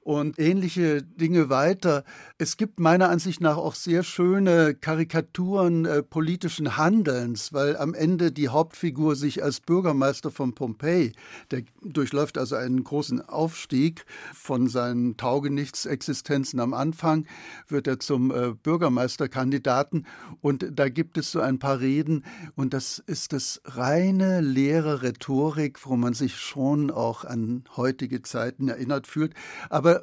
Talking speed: 135 wpm